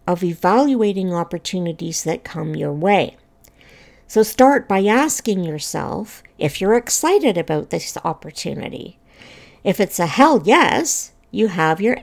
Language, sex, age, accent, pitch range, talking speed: English, female, 60-79, American, 175-240 Hz, 130 wpm